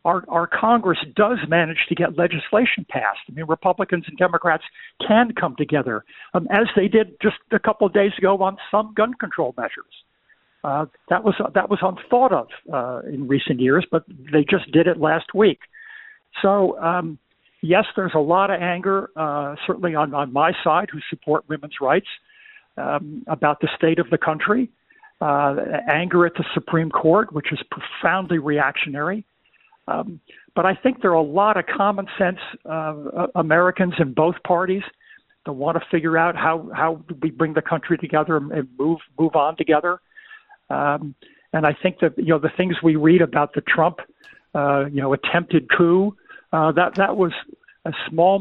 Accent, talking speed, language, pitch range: American, 180 wpm, English, 160-195 Hz